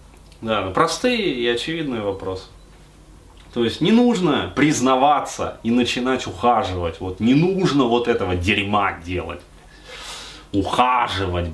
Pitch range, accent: 95-135 Hz, native